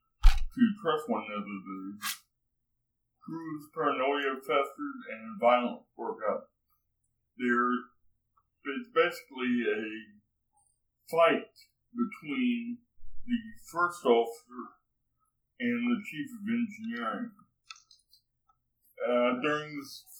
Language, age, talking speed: English, 60-79, 85 wpm